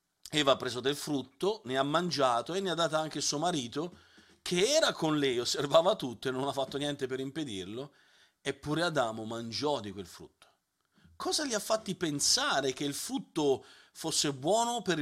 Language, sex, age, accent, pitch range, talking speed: Italian, male, 40-59, native, 130-170 Hz, 180 wpm